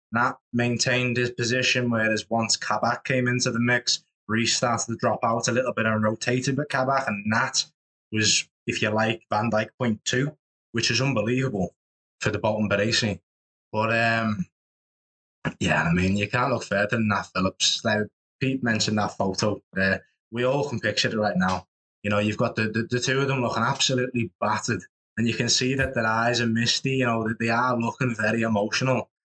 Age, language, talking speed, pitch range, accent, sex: 20-39, English, 195 wpm, 105-125 Hz, British, male